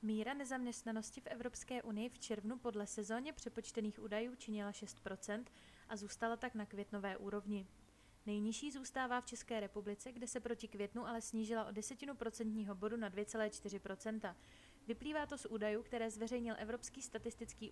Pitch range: 210-245 Hz